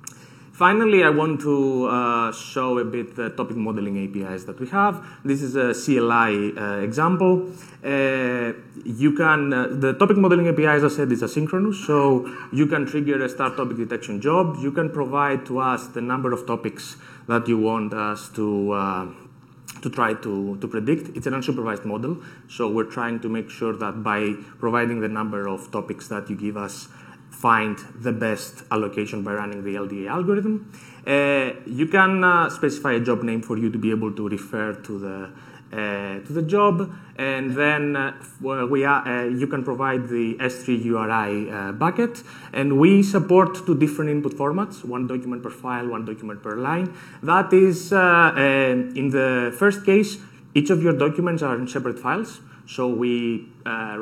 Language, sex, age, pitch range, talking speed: English, male, 30-49, 110-150 Hz, 180 wpm